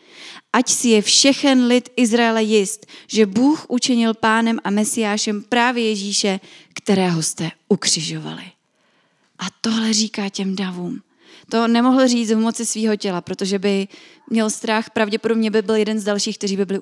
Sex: female